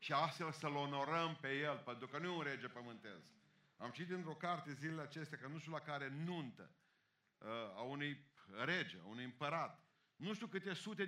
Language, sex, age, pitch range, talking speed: Romanian, male, 50-69, 135-180 Hz, 190 wpm